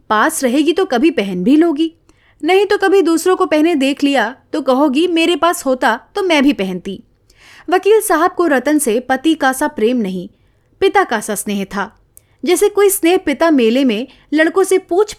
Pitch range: 215-340 Hz